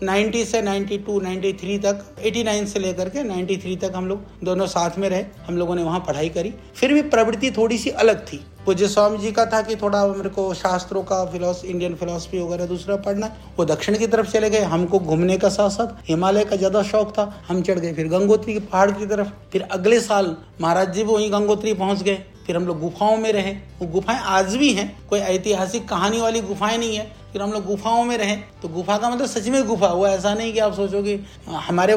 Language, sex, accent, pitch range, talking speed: Hindi, male, native, 185-220 Hz, 230 wpm